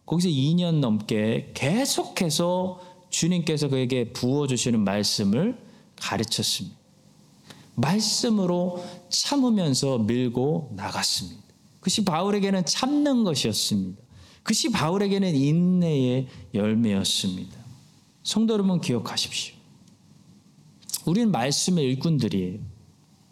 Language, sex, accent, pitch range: Korean, male, native, 125-200 Hz